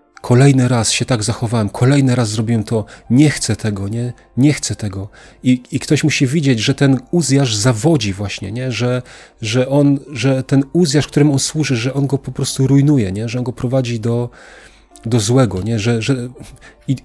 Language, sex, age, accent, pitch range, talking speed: Polish, male, 40-59, native, 110-135 Hz, 185 wpm